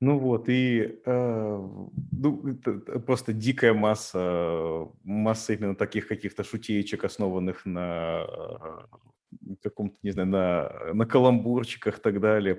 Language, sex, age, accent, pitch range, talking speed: Russian, male, 30-49, native, 100-130 Hz, 120 wpm